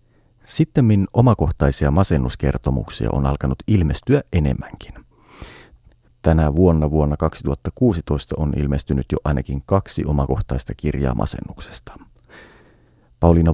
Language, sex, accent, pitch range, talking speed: Finnish, male, native, 70-105 Hz, 95 wpm